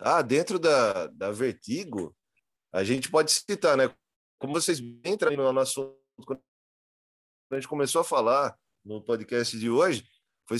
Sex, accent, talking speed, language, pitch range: male, Brazilian, 155 wpm, Portuguese, 120-170 Hz